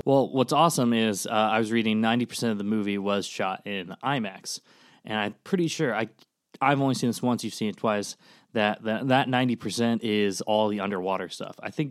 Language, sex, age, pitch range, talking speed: English, male, 20-39, 100-115 Hz, 205 wpm